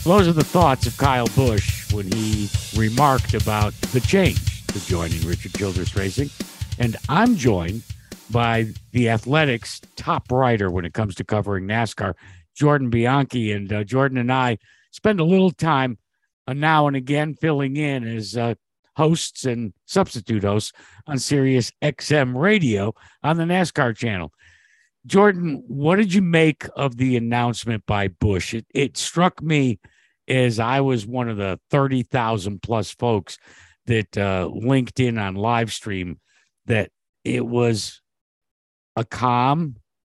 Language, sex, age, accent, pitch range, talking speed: English, male, 60-79, American, 105-135 Hz, 150 wpm